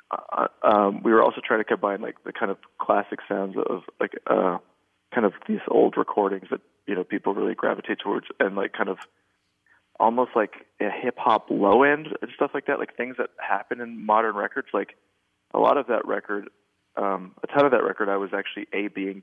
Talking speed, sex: 210 wpm, male